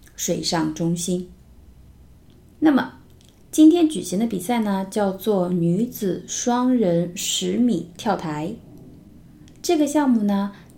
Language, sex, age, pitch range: Chinese, female, 20-39, 175-230 Hz